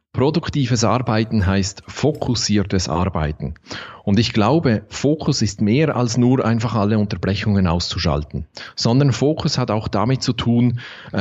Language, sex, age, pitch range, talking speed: German, male, 30-49, 100-135 Hz, 130 wpm